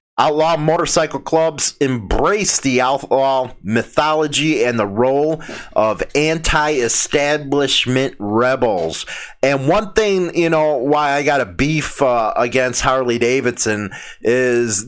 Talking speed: 115 wpm